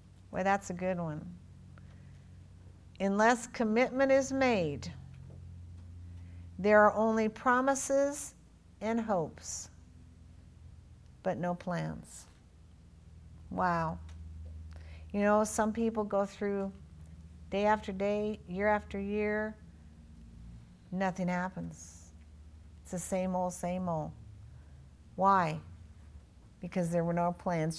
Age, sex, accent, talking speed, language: 50-69, female, American, 95 wpm, English